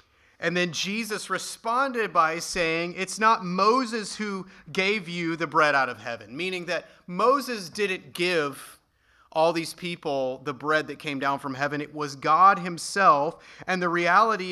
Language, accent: English, American